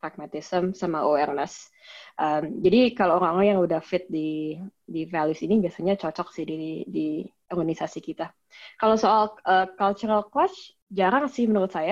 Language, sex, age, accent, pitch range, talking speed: Indonesian, female, 20-39, native, 165-200 Hz, 150 wpm